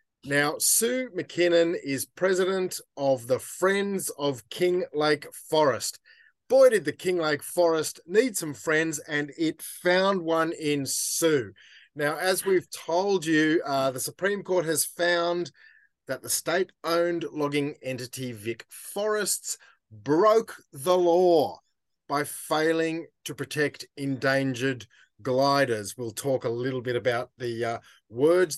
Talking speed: 130 wpm